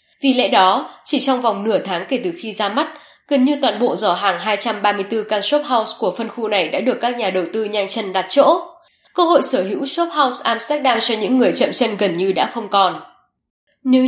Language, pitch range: Vietnamese, 210-270 Hz